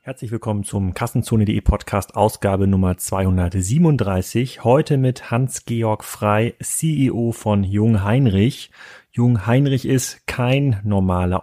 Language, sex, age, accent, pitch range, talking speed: German, male, 30-49, German, 105-125 Hz, 110 wpm